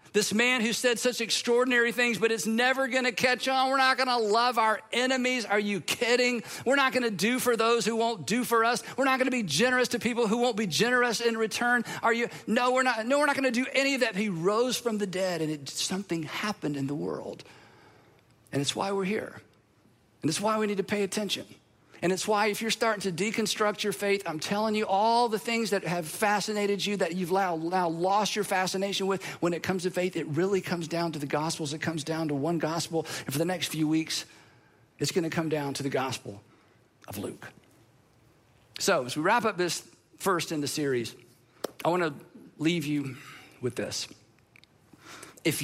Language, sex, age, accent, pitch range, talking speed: English, male, 50-69, American, 160-235 Hz, 210 wpm